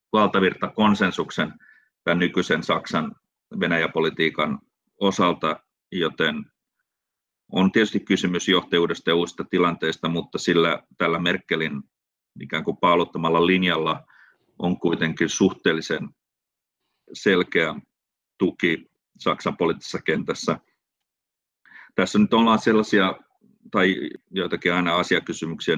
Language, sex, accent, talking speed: Finnish, male, native, 90 wpm